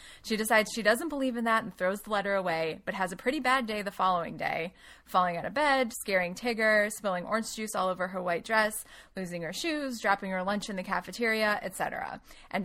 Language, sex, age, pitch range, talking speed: English, female, 20-39, 175-220 Hz, 220 wpm